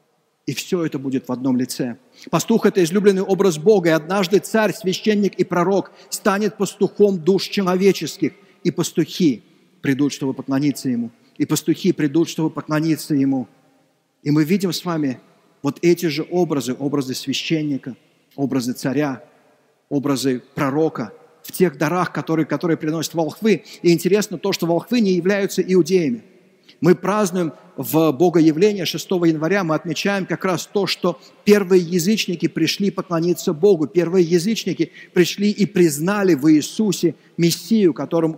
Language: Russian